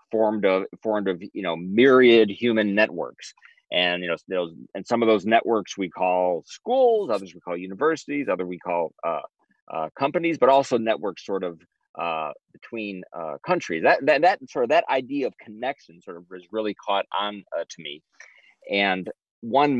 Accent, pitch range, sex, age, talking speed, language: American, 90-125 Hz, male, 30-49, 180 wpm, English